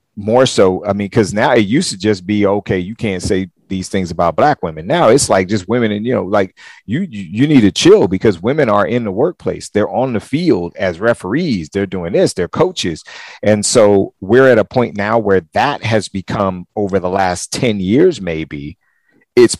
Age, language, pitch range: 40-59, English, 90-110 Hz